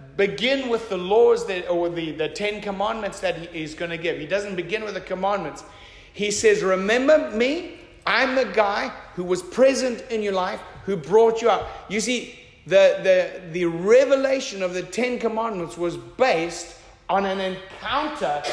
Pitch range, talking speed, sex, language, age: 195-270 Hz, 175 wpm, male, English, 50-69